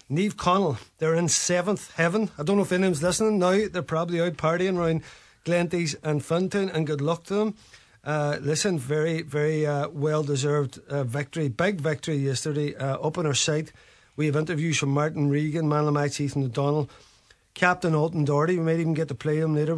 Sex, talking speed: male, 190 wpm